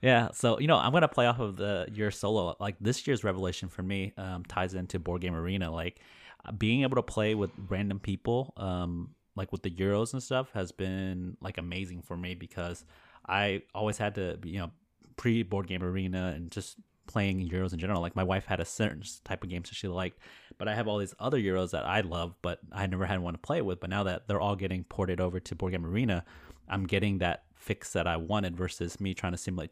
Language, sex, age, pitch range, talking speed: English, male, 30-49, 90-100 Hz, 235 wpm